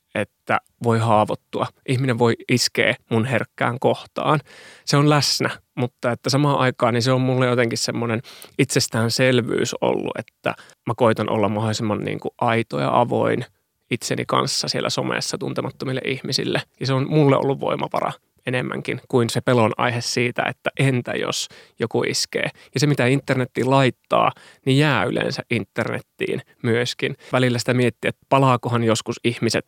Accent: native